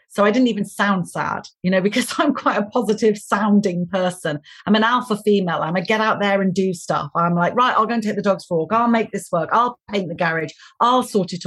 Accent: British